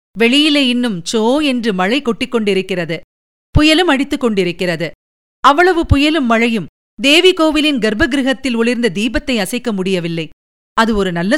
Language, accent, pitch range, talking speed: Tamil, native, 205-290 Hz, 120 wpm